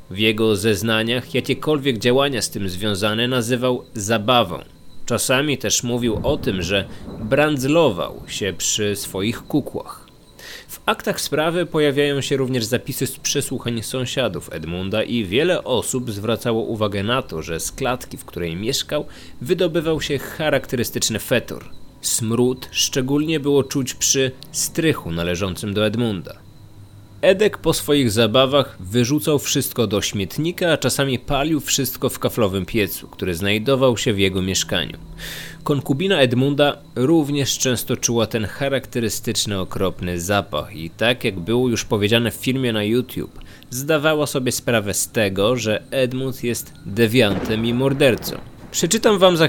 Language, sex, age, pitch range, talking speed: Polish, male, 30-49, 105-140 Hz, 135 wpm